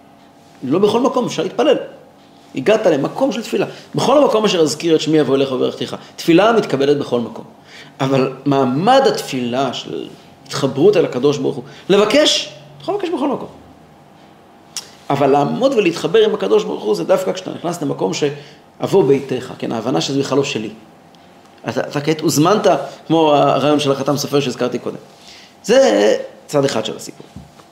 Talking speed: 155 wpm